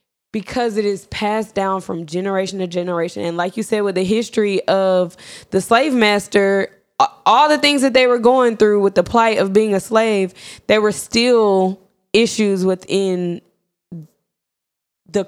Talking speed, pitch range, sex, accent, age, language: 160 wpm, 190-225 Hz, female, American, 10-29, English